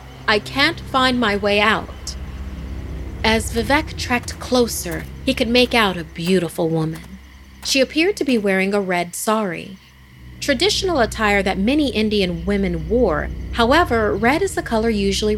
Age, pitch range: 30-49, 165-250 Hz